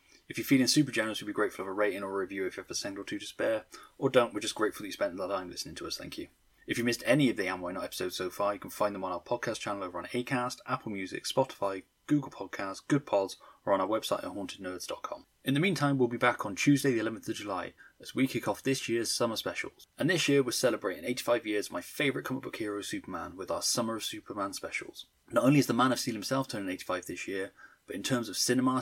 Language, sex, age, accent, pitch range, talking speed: English, male, 20-39, British, 105-135 Hz, 275 wpm